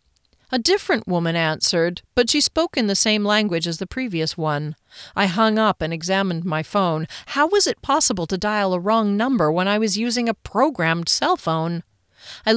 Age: 40-59